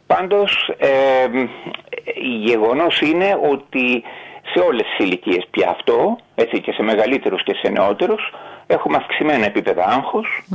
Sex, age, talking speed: male, 40-59, 125 wpm